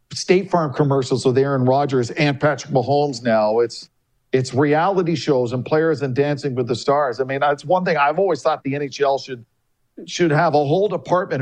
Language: English